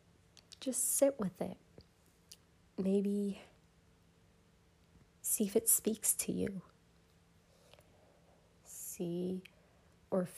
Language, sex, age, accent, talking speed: English, female, 30-49, American, 75 wpm